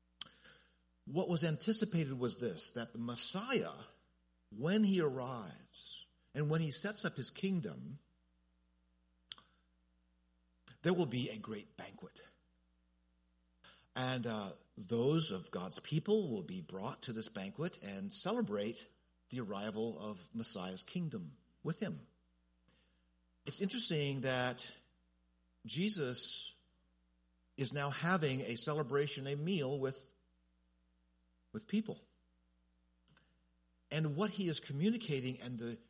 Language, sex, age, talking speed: English, male, 50-69, 110 wpm